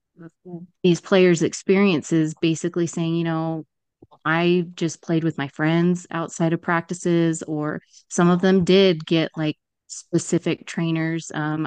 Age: 30-49